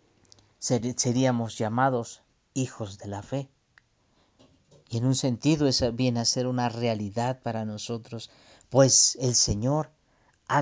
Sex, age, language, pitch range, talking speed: male, 50-69, Spanish, 115-140 Hz, 125 wpm